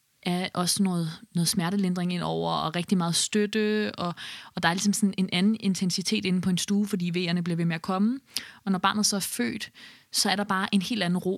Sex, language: female, Danish